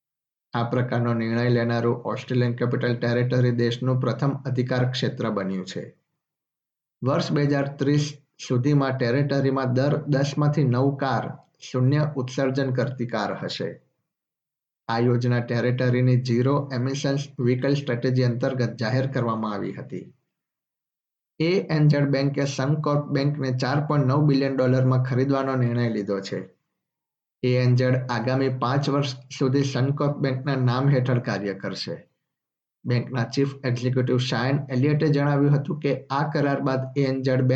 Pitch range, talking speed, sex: 125-140 Hz, 40 wpm, male